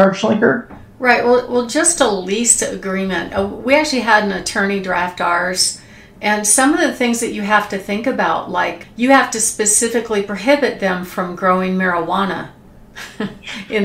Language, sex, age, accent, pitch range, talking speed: English, female, 50-69, American, 190-240 Hz, 155 wpm